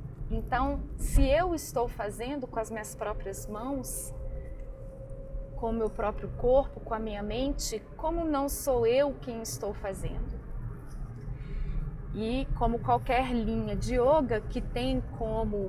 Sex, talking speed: female, 135 wpm